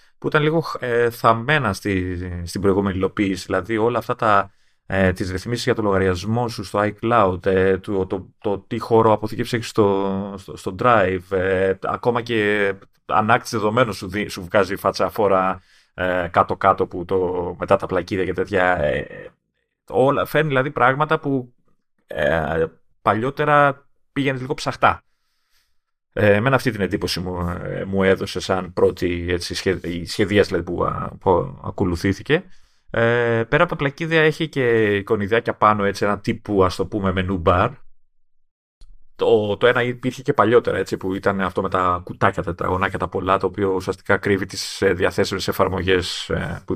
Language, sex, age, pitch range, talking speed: Greek, male, 30-49, 95-115 Hz, 145 wpm